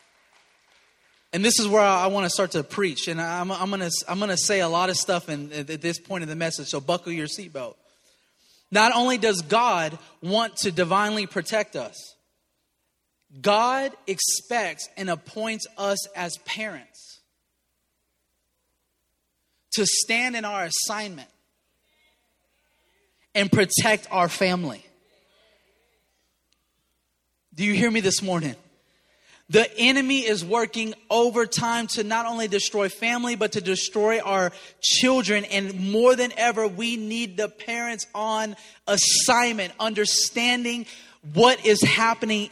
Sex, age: male, 30-49